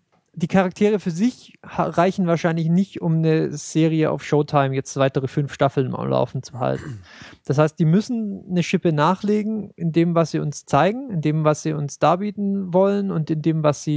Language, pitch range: German, 155-185 Hz